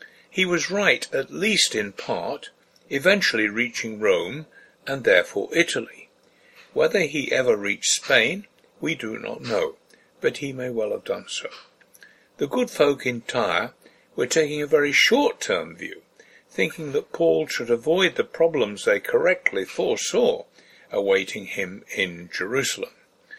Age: 60-79